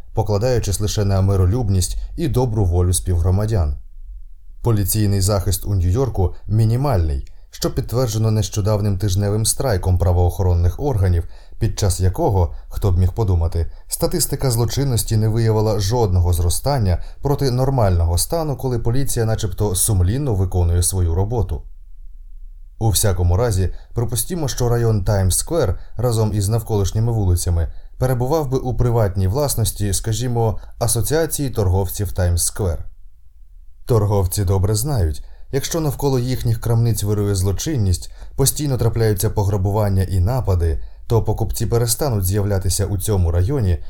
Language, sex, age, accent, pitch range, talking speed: Ukrainian, male, 20-39, native, 90-115 Hz, 115 wpm